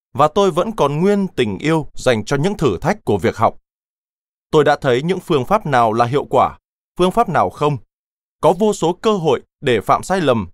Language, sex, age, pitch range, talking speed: Vietnamese, male, 20-39, 125-175 Hz, 215 wpm